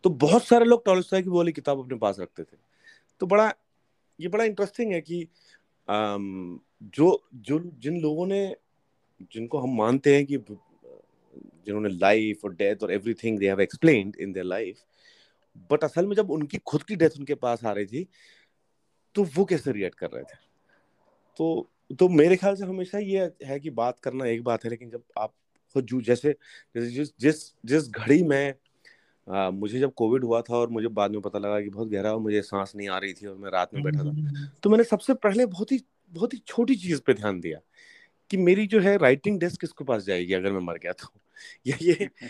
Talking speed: 200 wpm